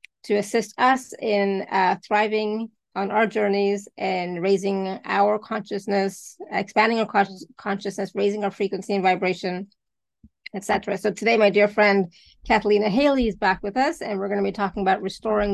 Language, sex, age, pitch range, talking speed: English, female, 20-39, 195-215 Hz, 160 wpm